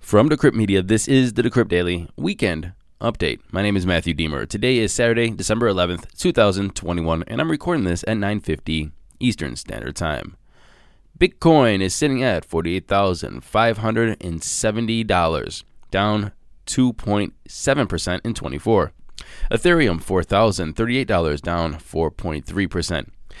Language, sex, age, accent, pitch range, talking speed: English, male, 20-39, American, 90-115 Hz, 110 wpm